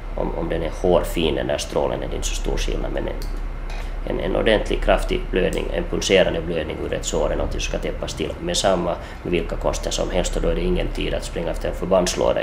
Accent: Finnish